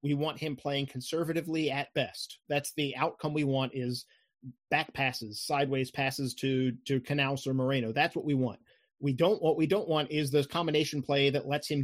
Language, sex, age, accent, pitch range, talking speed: English, male, 30-49, American, 130-155 Hz, 200 wpm